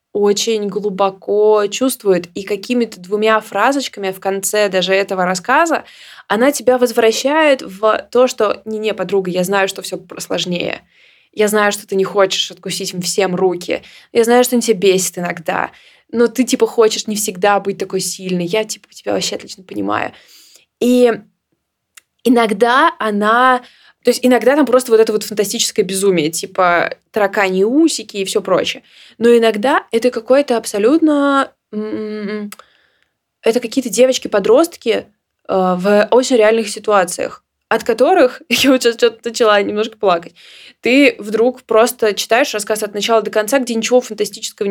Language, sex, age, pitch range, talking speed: Russian, female, 20-39, 200-240 Hz, 145 wpm